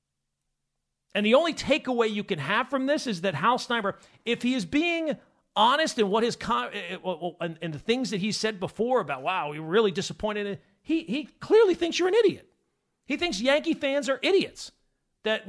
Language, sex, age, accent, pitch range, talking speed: English, male, 40-59, American, 175-245 Hz, 195 wpm